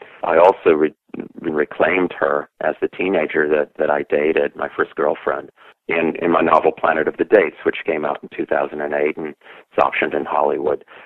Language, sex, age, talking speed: English, male, 40-59, 180 wpm